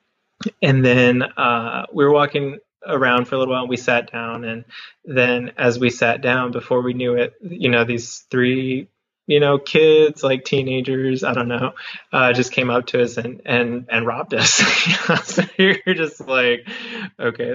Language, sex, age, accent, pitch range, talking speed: English, male, 20-39, American, 115-135 Hz, 180 wpm